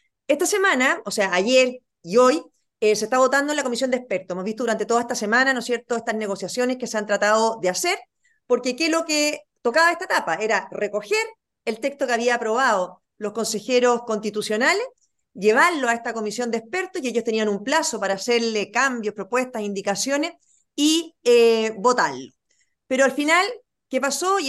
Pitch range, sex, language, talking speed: 220-295 Hz, female, Spanish, 185 wpm